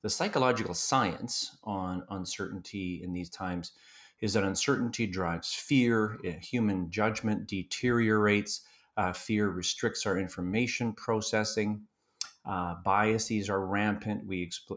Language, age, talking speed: English, 40-59, 110 wpm